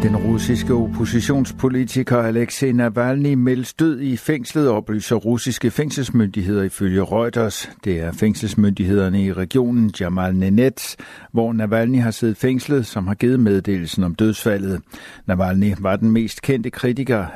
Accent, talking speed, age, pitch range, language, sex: native, 130 wpm, 60-79, 95-120 Hz, Danish, male